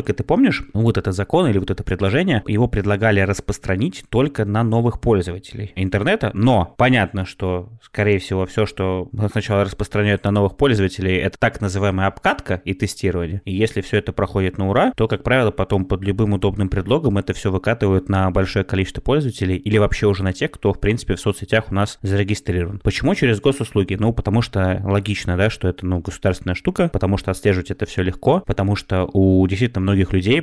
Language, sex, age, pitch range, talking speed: Russian, male, 20-39, 95-110 Hz, 190 wpm